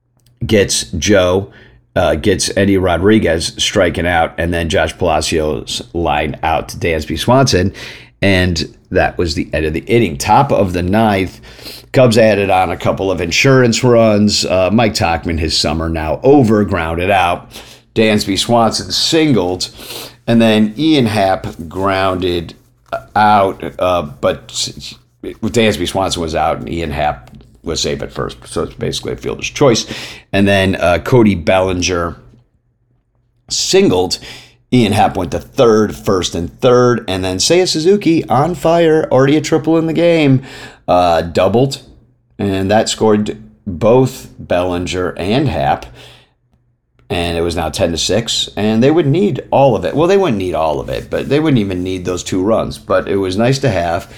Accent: American